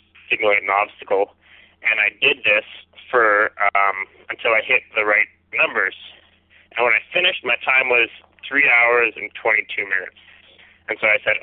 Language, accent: English, American